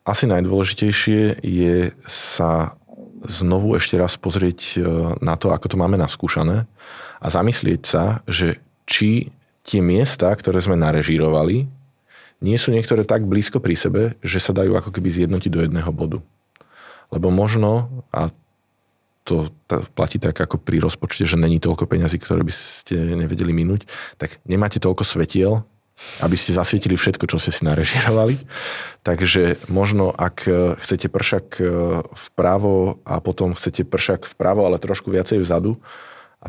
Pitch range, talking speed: 85-105 Hz, 140 wpm